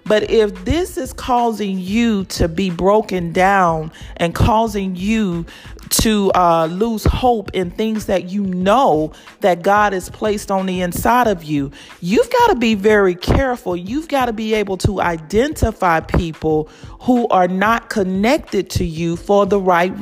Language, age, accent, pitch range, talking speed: English, 40-59, American, 195-270 Hz, 160 wpm